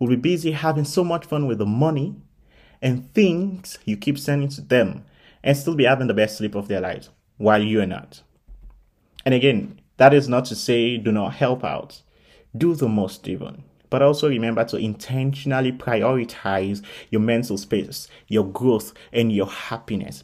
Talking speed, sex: 180 wpm, male